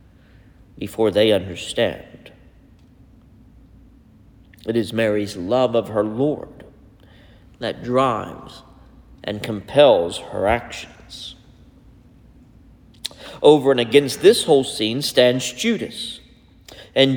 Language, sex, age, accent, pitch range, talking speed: English, male, 50-69, American, 105-135 Hz, 85 wpm